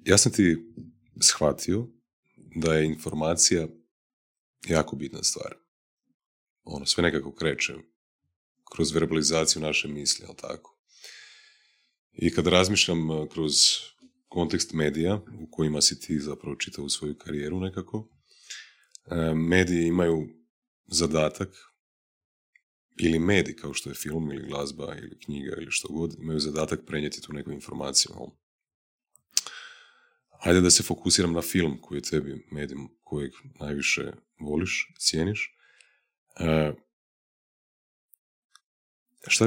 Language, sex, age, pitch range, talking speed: Croatian, male, 30-49, 75-95 Hz, 110 wpm